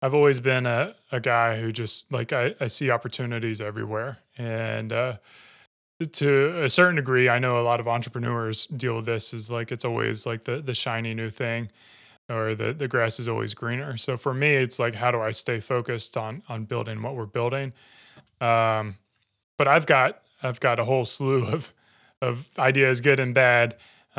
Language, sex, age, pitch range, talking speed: English, male, 20-39, 115-135 Hz, 190 wpm